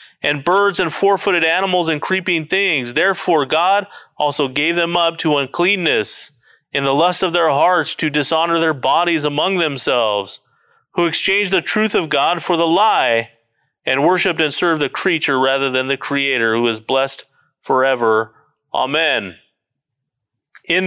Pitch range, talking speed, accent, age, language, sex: 125-165 Hz, 150 wpm, American, 30-49, English, male